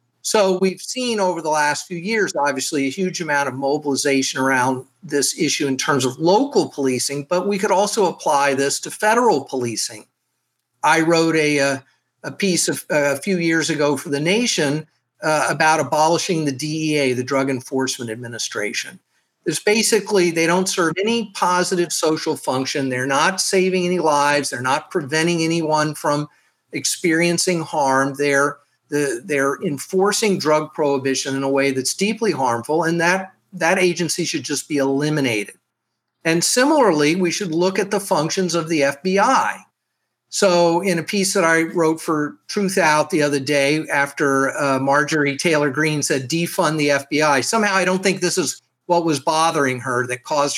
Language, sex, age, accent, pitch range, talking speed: English, male, 50-69, American, 140-180 Hz, 165 wpm